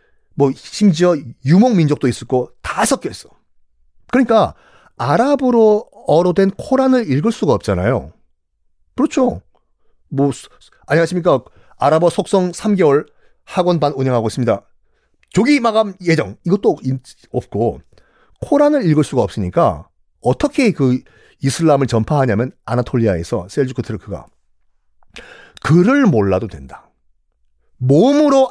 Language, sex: Korean, male